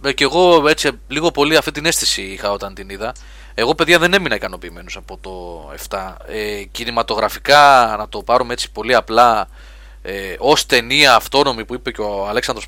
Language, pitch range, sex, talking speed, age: Greek, 100-140 Hz, male, 175 wpm, 20-39